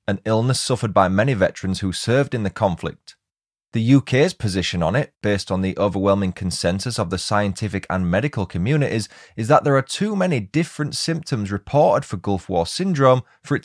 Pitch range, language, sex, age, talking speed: 100-135 Hz, English, male, 20-39, 185 wpm